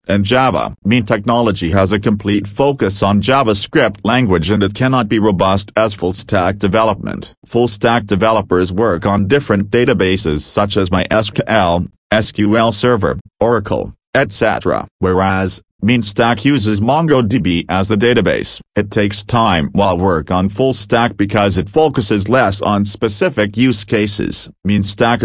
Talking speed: 145 wpm